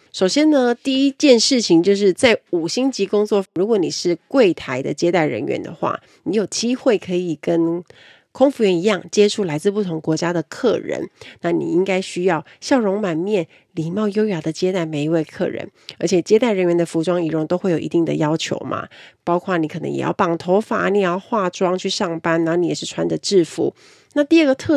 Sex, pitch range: female, 165-215 Hz